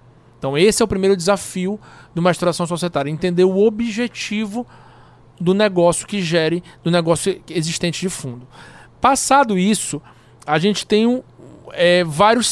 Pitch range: 155-200 Hz